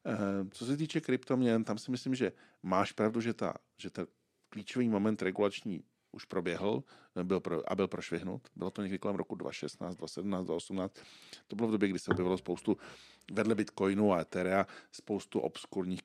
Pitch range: 90-105 Hz